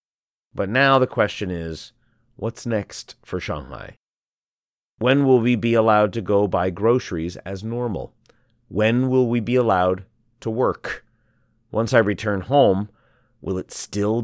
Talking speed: 145 wpm